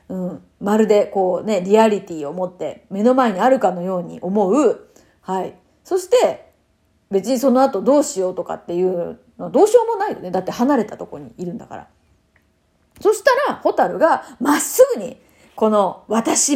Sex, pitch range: female, 195-300 Hz